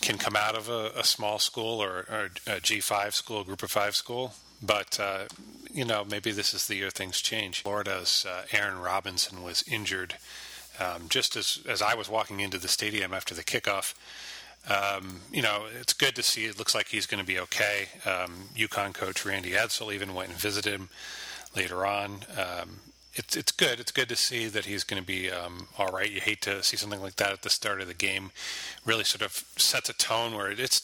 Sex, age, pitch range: male, 30-49, 95-105 Hz